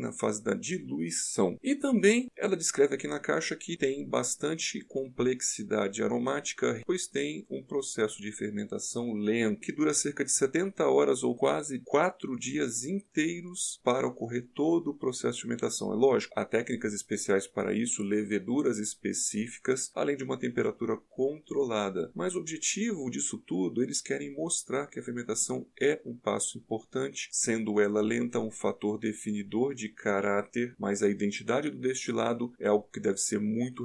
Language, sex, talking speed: Portuguese, male, 160 wpm